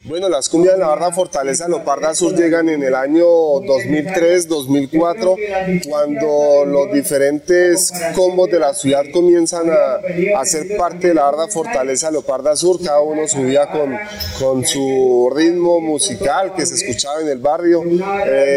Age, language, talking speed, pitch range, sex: 30-49, Spanish, 150 wpm, 140-180 Hz, male